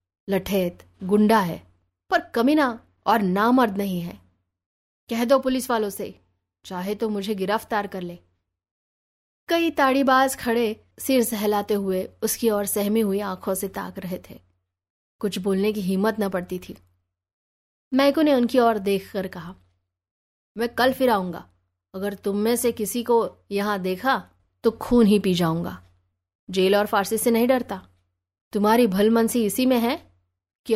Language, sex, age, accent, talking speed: Hindi, female, 20-39, native, 150 wpm